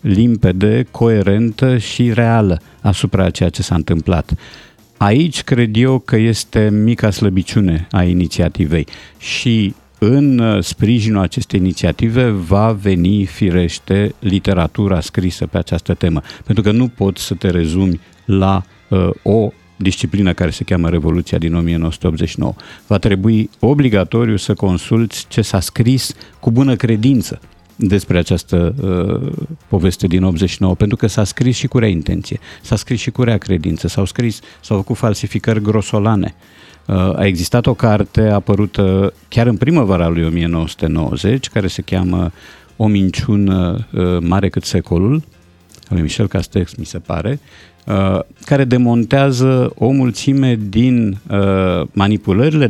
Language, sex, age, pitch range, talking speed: Romanian, male, 50-69, 90-115 Hz, 130 wpm